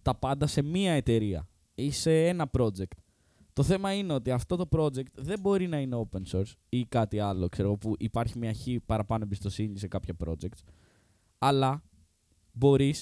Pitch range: 95-130 Hz